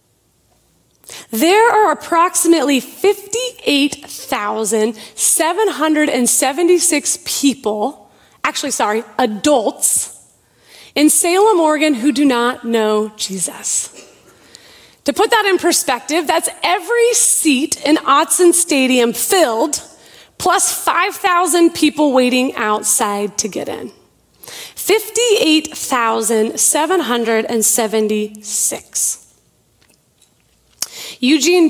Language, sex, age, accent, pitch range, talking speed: English, female, 30-49, American, 235-350 Hz, 70 wpm